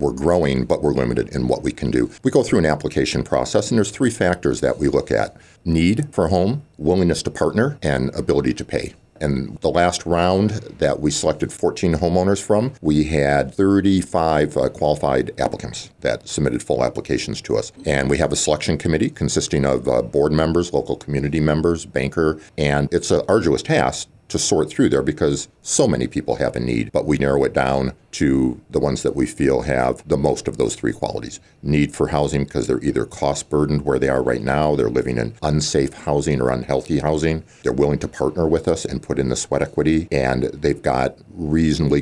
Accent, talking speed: American, 200 wpm